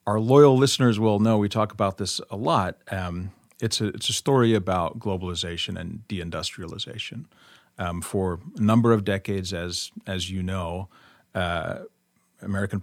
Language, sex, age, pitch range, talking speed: English, male, 40-59, 95-110 Hz, 155 wpm